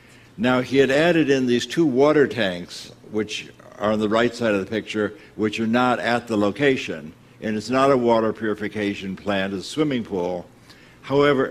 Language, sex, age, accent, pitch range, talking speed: English, male, 60-79, American, 100-125 Hz, 190 wpm